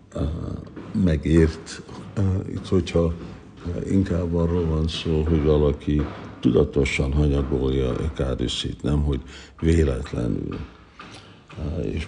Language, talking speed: Hungarian, 85 wpm